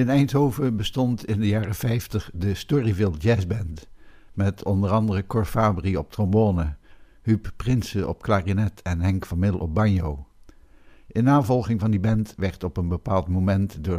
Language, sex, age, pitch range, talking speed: Dutch, male, 60-79, 95-110 Hz, 165 wpm